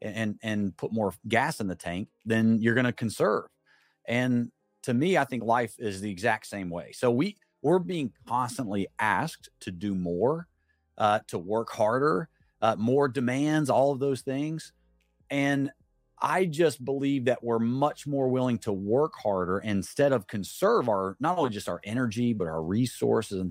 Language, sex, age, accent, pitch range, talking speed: English, male, 40-59, American, 100-130 Hz, 175 wpm